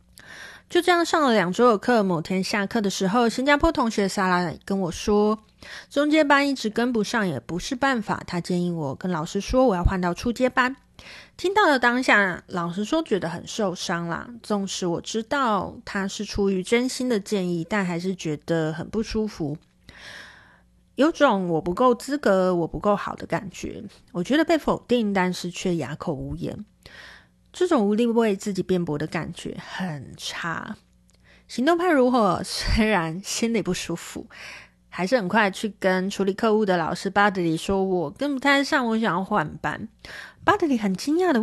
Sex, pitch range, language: female, 180-245 Hz, Chinese